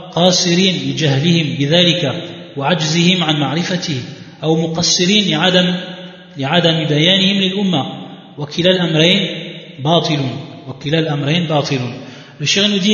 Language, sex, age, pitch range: French, male, 30-49, 150-190 Hz